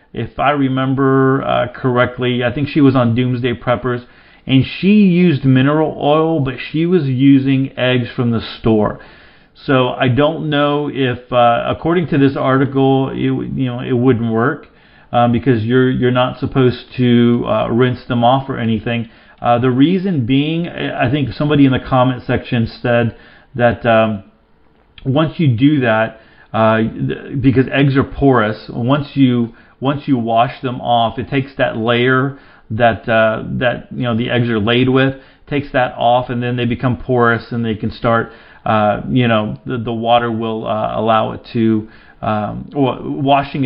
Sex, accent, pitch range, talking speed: male, American, 115-135 Hz, 170 wpm